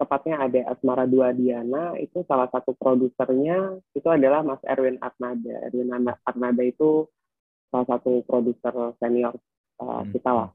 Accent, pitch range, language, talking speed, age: native, 125-155 Hz, Indonesian, 135 wpm, 30-49